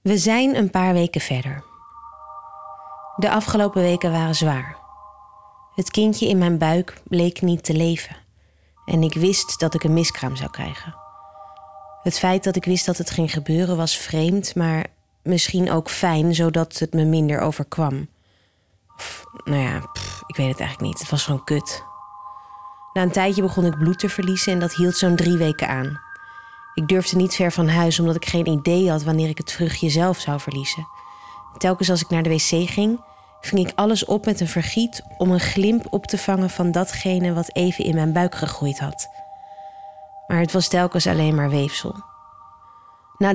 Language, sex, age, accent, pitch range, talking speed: Dutch, female, 30-49, Dutch, 160-200 Hz, 180 wpm